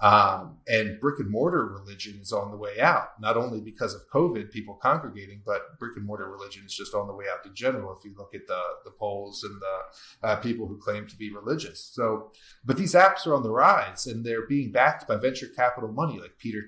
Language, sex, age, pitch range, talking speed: English, male, 30-49, 105-130 Hz, 220 wpm